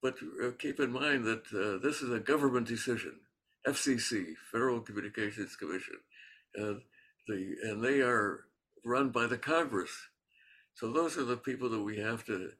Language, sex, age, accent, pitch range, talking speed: English, male, 60-79, American, 110-135 Hz, 150 wpm